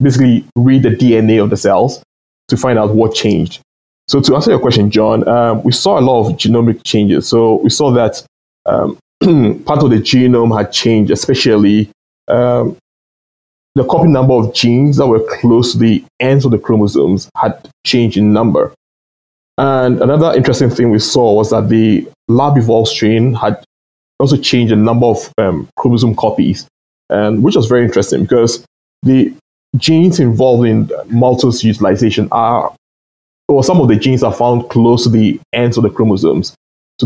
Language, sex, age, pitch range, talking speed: English, male, 20-39, 105-125 Hz, 175 wpm